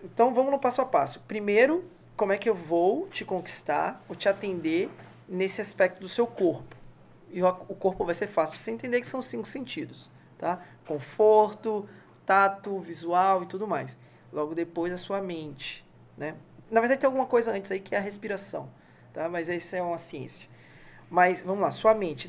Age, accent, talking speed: 20-39, Brazilian, 190 wpm